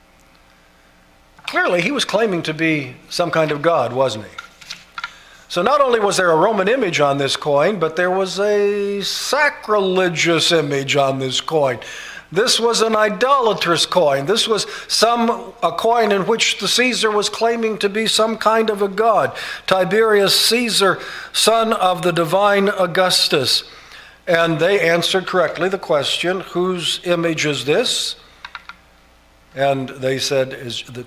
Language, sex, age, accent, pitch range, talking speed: English, male, 50-69, American, 125-185 Hz, 150 wpm